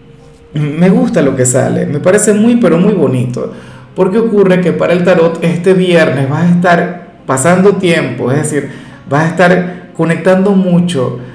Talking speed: 165 wpm